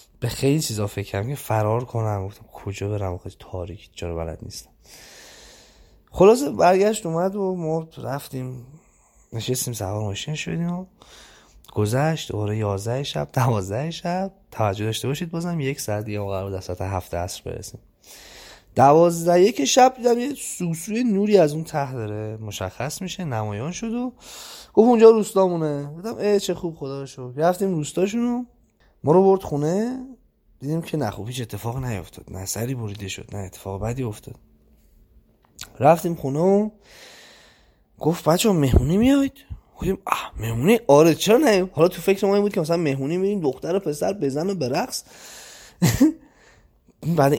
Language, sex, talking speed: Persian, male, 150 wpm